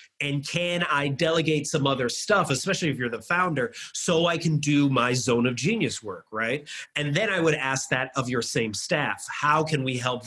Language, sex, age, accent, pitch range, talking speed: English, male, 30-49, American, 135-175 Hz, 210 wpm